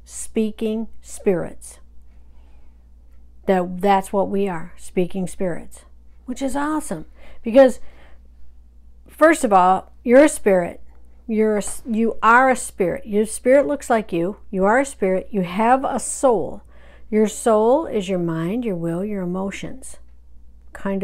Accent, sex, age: American, female, 60-79